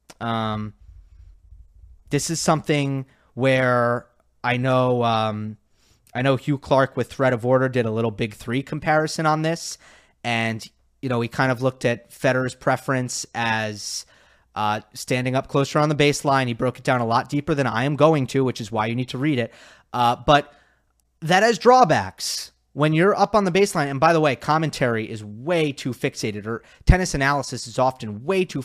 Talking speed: 185 wpm